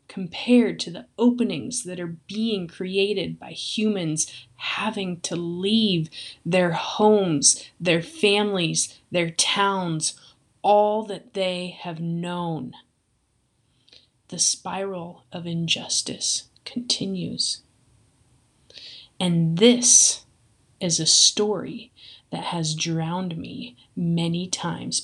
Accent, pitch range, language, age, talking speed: American, 165-220 Hz, English, 30-49, 95 wpm